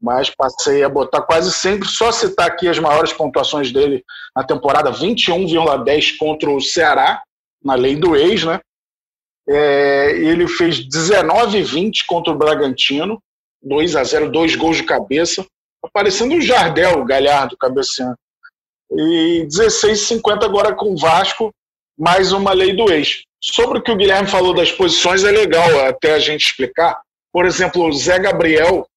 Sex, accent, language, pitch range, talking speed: male, Brazilian, Portuguese, 165-245 Hz, 155 wpm